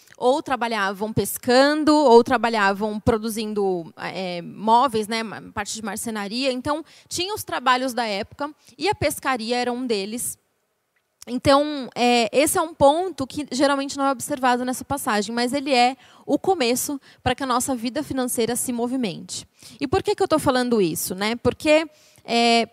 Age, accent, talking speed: 20-39, Brazilian, 160 wpm